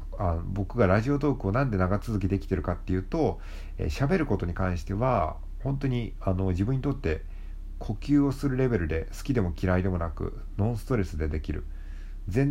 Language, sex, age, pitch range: Japanese, male, 50-69, 80-120 Hz